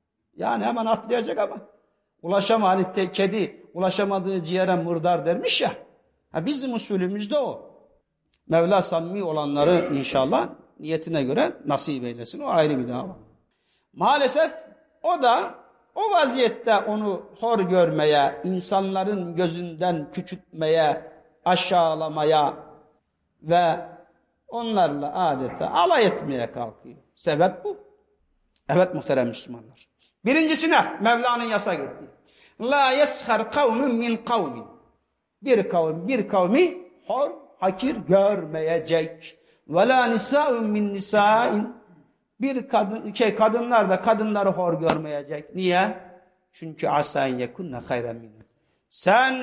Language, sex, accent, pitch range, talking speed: Turkish, male, native, 170-245 Hz, 110 wpm